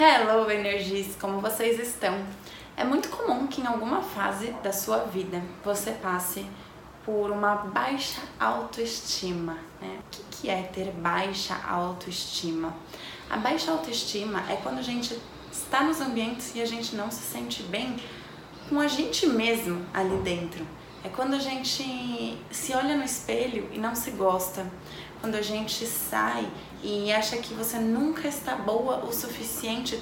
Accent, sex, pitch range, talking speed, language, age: Brazilian, female, 195-255 Hz, 150 wpm, Portuguese, 20-39